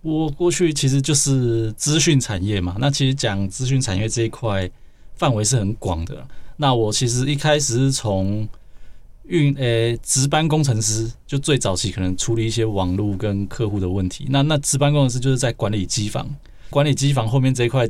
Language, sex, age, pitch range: Chinese, male, 20-39, 100-135 Hz